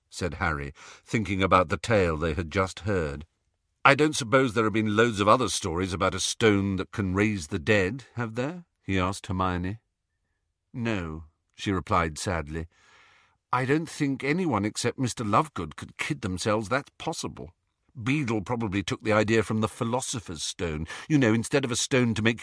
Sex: male